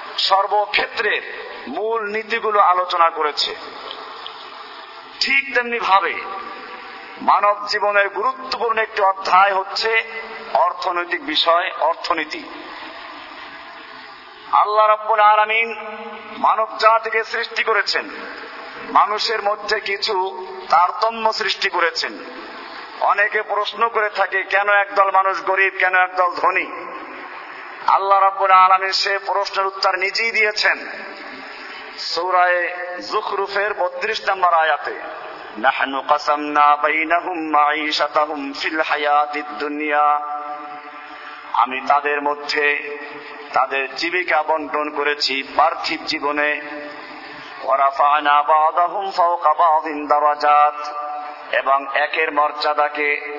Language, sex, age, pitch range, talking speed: Bengali, male, 50-69, 150-200 Hz, 60 wpm